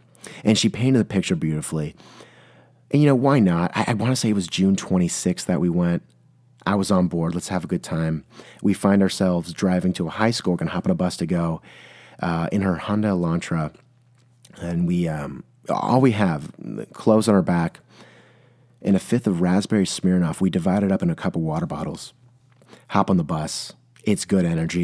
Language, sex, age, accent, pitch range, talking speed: English, male, 30-49, American, 90-115 Hz, 210 wpm